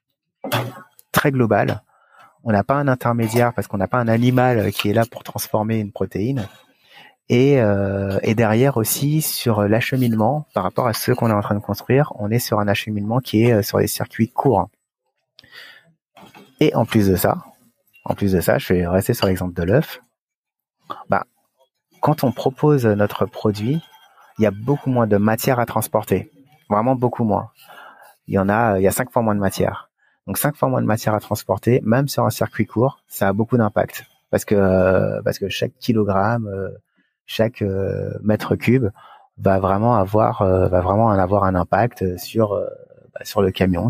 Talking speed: 175 wpm